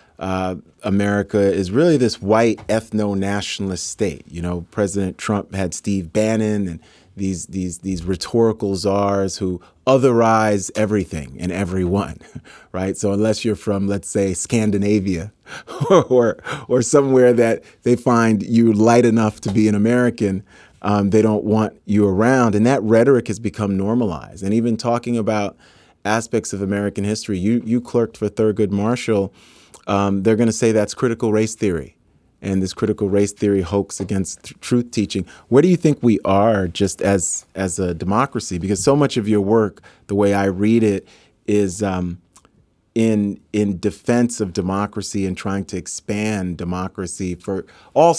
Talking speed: 160 wpm